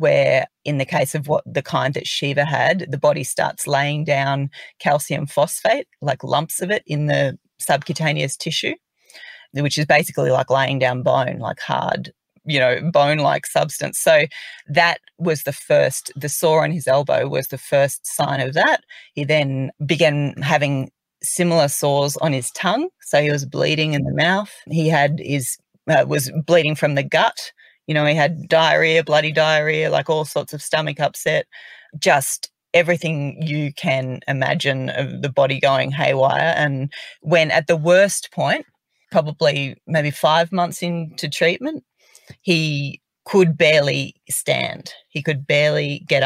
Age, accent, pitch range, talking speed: 40-59, Australian, 140-165 Hz, 160 wpm